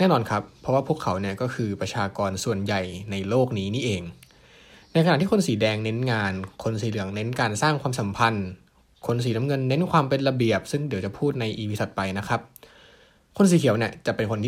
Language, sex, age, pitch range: Thai, male, 20-39, 105-140 Hz